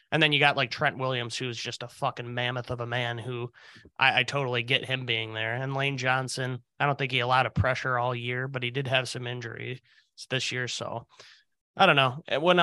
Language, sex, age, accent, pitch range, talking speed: English, male, 20-39, American, 125-150 Hz, 240 wpm